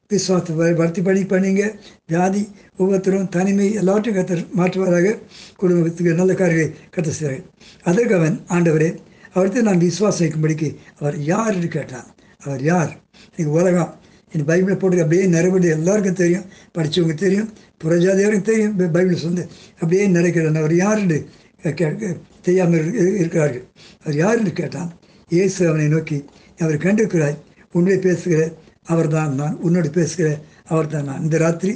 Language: Tamil